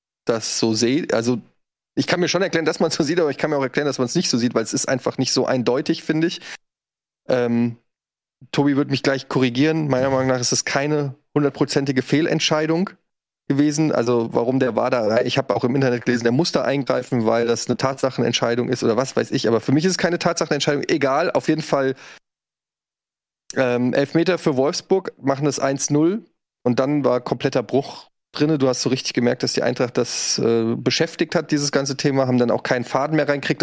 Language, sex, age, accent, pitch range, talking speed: German, male, 20-39, German, 130-150 Hz, 210 wpm